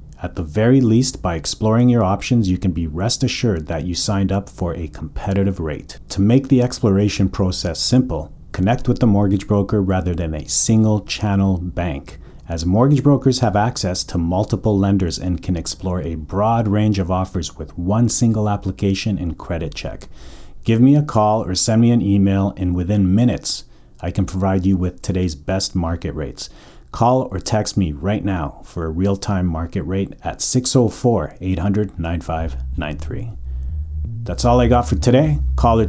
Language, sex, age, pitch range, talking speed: English, male, 40-59, 90-110 Hz, 170 wpm